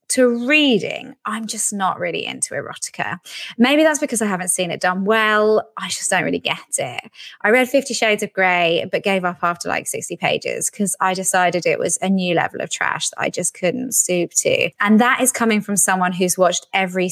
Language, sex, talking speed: English, female, 215 wpm